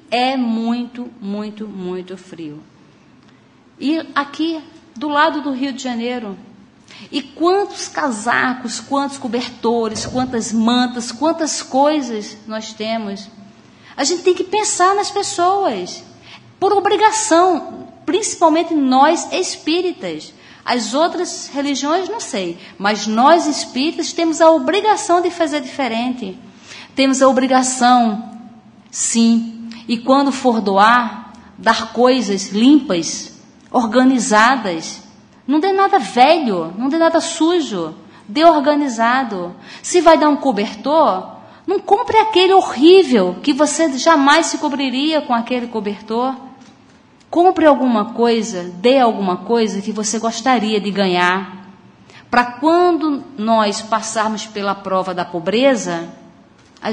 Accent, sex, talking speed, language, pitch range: Brazilian, female, 115 wpm, Portuguese, 220-315 Hz